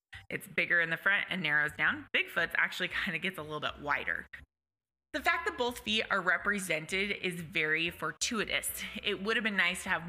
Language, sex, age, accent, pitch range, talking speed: English, female, 20-39, American, 170-235 Hz, 200 wpm